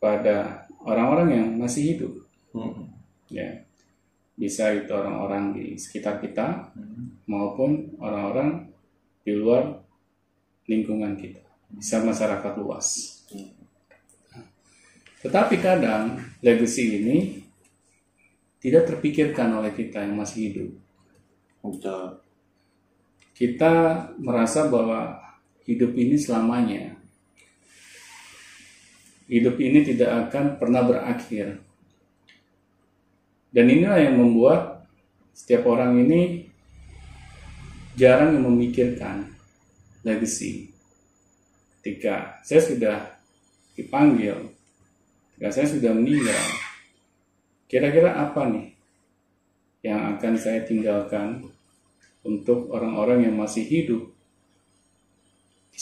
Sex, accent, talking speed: male, native, 80 wpm